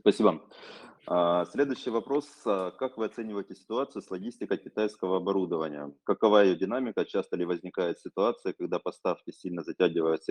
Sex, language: male, Russian